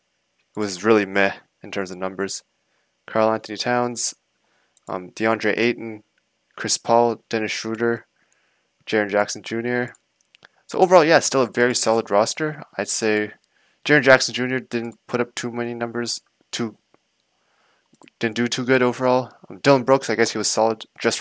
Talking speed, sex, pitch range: 155 wpm, male, 105-120 Hz